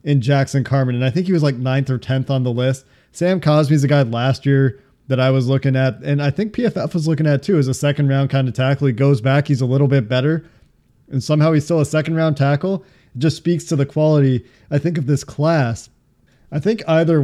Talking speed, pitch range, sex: 250 wpm, 130-155 Hz, male